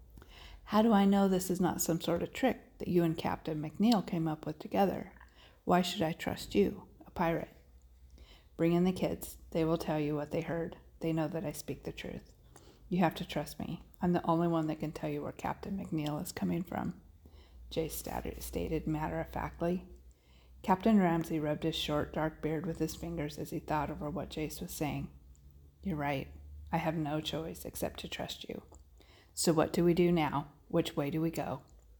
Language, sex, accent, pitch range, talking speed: English, female, American, 150-170 Hz, 200 wpm